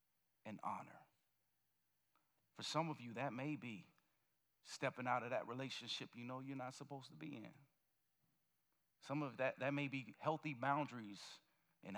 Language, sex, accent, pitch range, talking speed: English, male, American, 135-170 Hz, 155 wpm